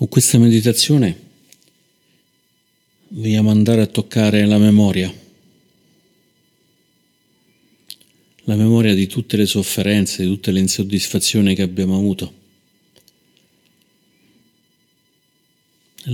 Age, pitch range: 50-69, 95-110 Hz